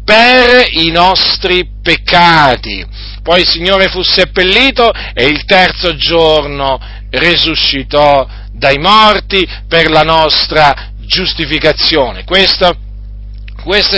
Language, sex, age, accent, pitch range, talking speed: Italian, male, 40-59, native, 145-205 Hz, 95 wpm